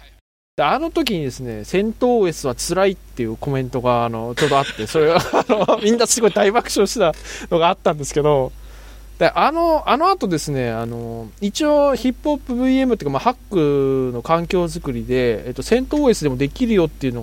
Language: Japanese